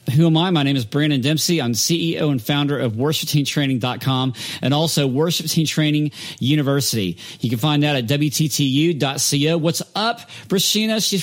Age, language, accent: 40-59, English, American